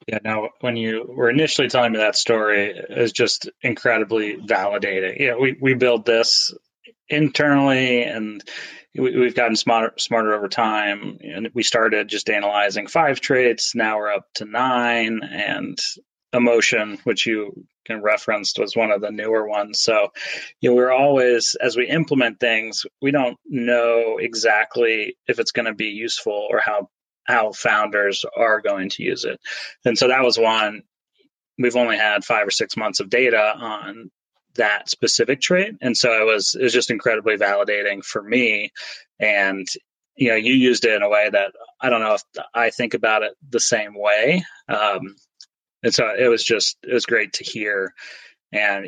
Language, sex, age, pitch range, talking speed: English, male, 30-49, 105-130 Hz, 175 wpm